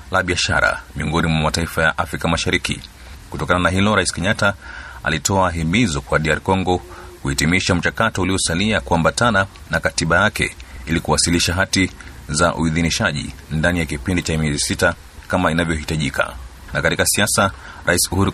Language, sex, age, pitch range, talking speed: Swahili, male, 30-49, 80-95 Hz, 135 wpm